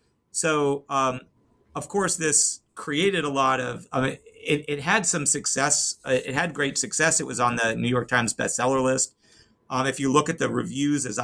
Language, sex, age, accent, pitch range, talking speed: English, male, 40-59, American, 125-145 Hz, 185 wpm